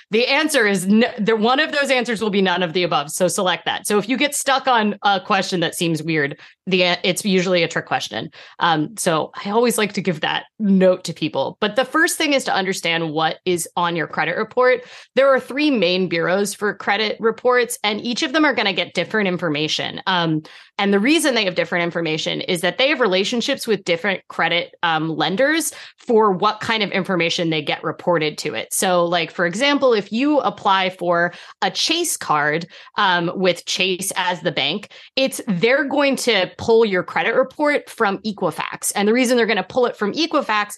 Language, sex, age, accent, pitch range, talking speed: English, female, 30-49, American, 175-245 Hz, 210 wpm